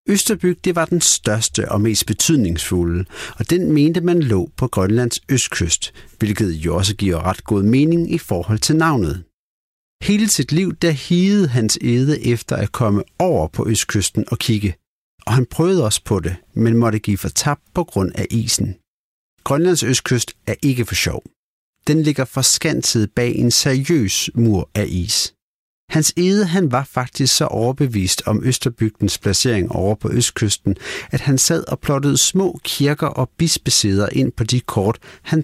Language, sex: Danish, male